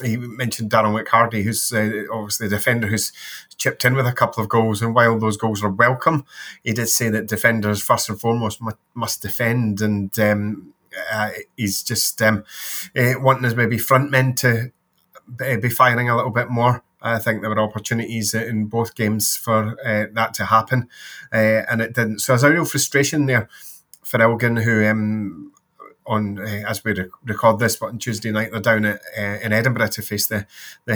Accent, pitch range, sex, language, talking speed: British, 110-125 Hz, male, English, 195 wpm